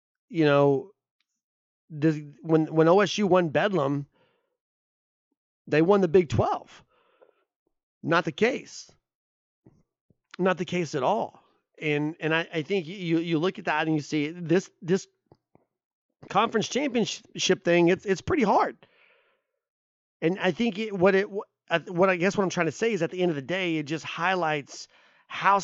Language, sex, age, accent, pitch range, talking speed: English, male, 30-49, American, 145-185 Hz, 160 wpm